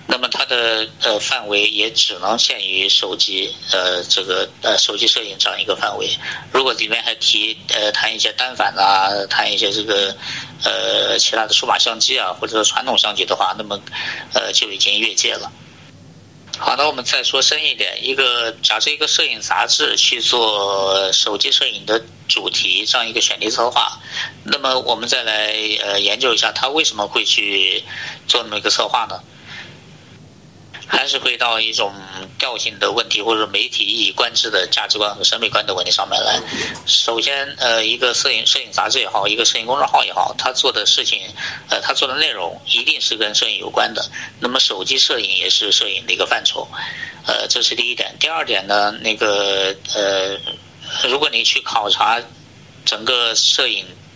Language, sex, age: Chinese, male, 50-69